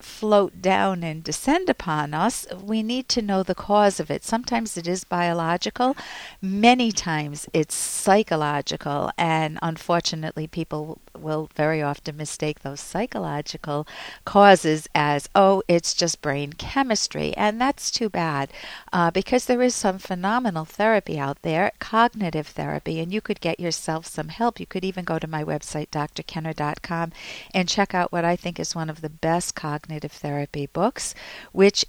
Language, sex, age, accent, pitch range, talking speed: English, female, 50-69, American, 160-225 Hz, 155 wpm